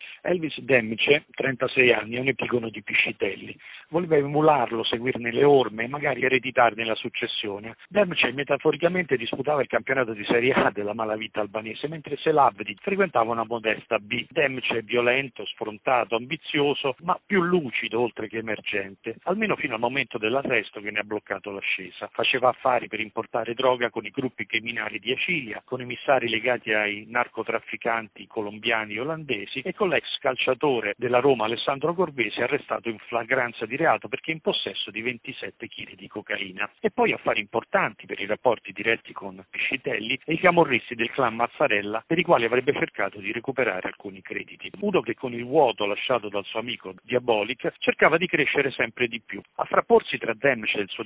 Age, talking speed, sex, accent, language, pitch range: 50-69, 175 wpm, male, native, Italian, 110-140 Hz